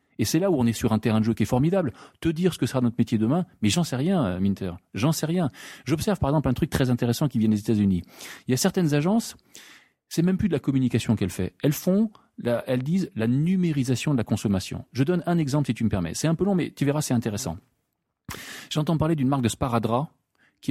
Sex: male